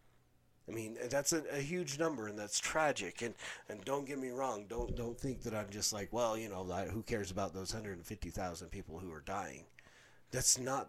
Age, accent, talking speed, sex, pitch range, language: 30-49, American, 220 wpm, male, 95-130 Hz, English